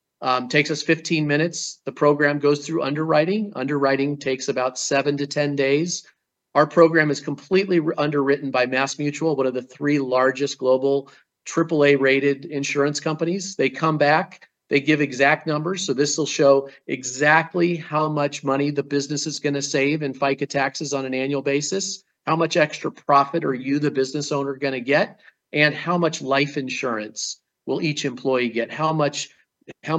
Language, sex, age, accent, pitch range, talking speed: English, male, 40-59, American, 140-160 Hz, 170 wpm